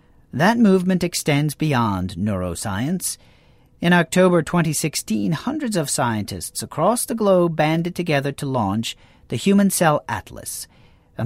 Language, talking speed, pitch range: English, 125 wpm, 125-165 Hz